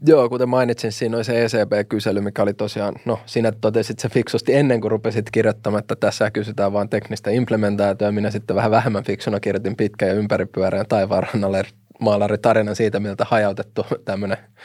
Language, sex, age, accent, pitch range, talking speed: Finnish, male, 20-39, native, 100-110 Hz, 170 wpm